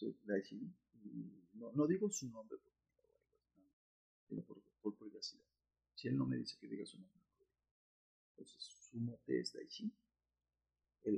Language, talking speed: Spanish, 145 wpm